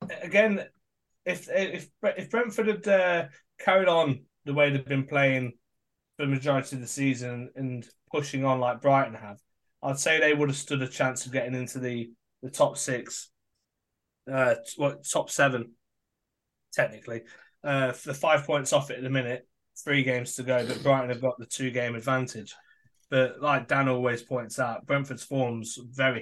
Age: 20-39